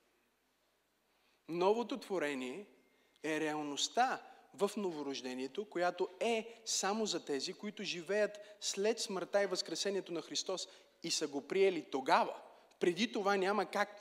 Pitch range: 160-210 Hz